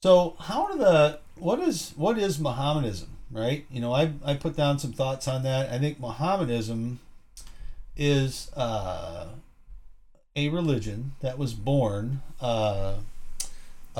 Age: 40-59